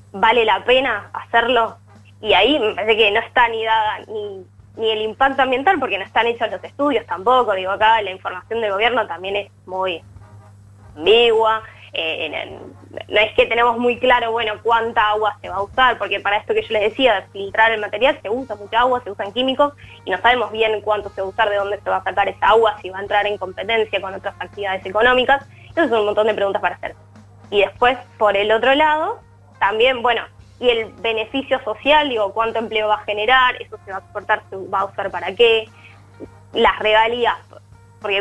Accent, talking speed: Argentinian, 210 wpm